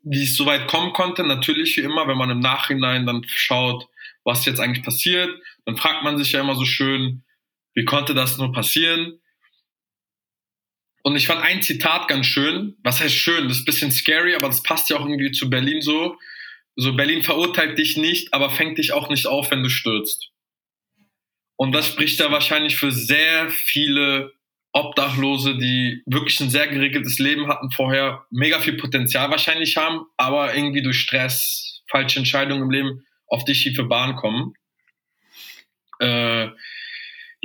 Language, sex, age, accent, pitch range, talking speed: German, male, 20-39, German, 130-160 Hz, 170 wpm